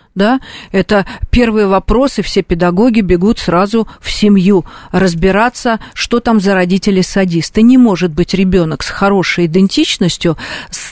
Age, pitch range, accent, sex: 40-59, 195-245 Hz, native, female